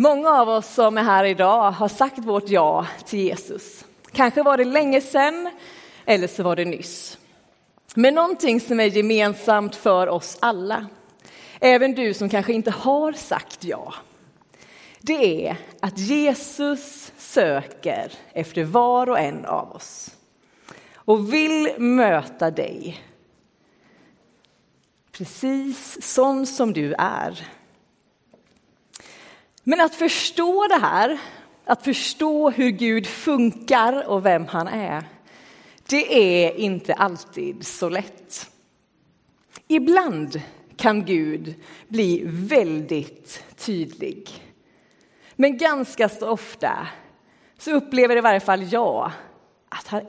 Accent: native